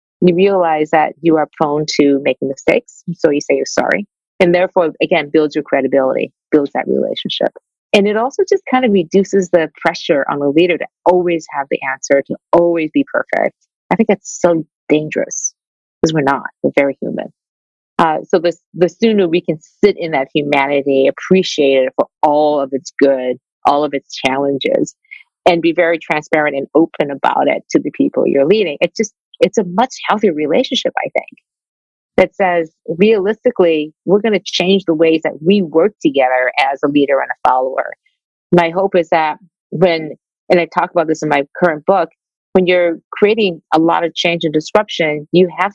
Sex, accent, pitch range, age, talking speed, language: female, American, 155-205 Hz, 40-59, 190 wpm, English